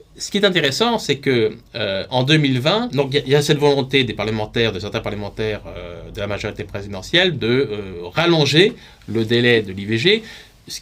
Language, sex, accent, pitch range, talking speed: French, male, French, 110-155 Hz, 180 wpm